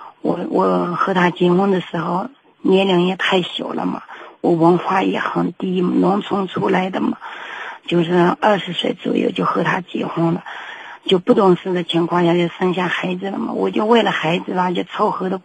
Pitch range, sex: 180-210 Hz, female